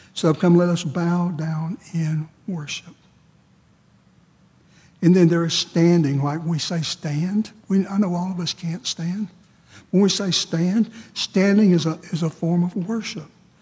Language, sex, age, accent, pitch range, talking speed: English, male, 60-79, American, 155-180 Hz, 170 wpm